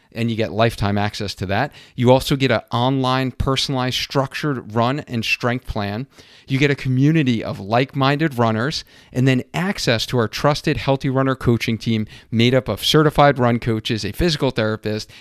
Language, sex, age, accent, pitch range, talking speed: English, male, 40-59, American, 110-135 Hz, 175 wpm